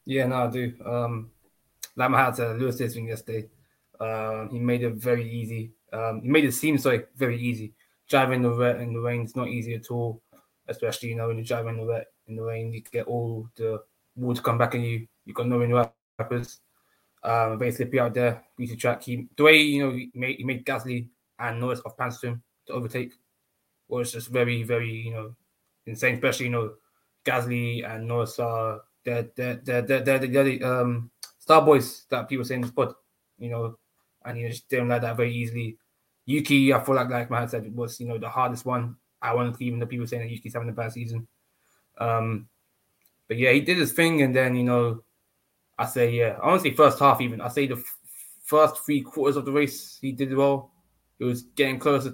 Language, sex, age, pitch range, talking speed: English, male, 20-39, 115-130 Hz, 215 wpm